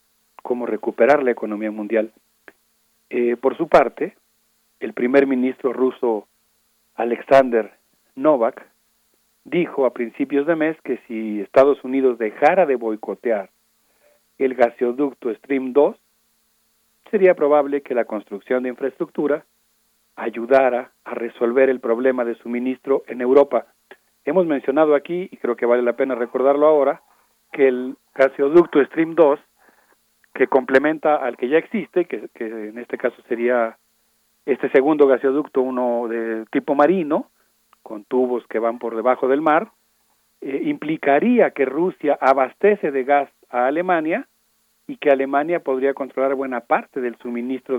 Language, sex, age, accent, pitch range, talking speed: Spanish, male, 40-59, Mexican, 120-155 Hz, 135 wpm